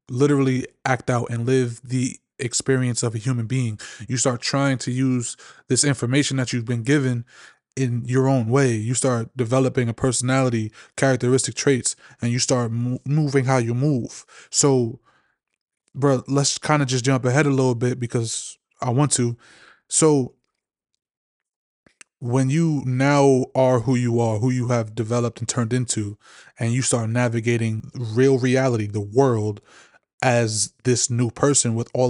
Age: 20-39